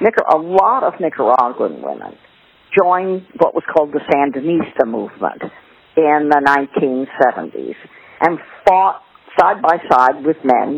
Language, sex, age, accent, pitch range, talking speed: English, female, 50-69, American, 140-185 Hz, 120 wpm